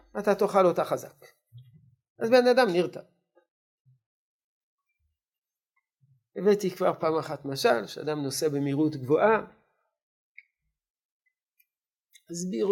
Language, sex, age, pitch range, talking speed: Hebrew, male, 50-69, 150-190 Hz, 85 wpm